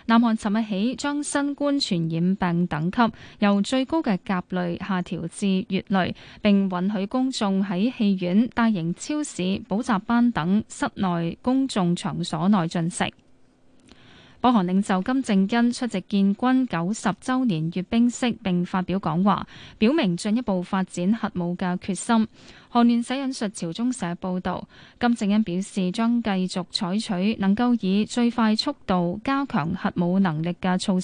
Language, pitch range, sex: Chinese, 185-235 Hz, female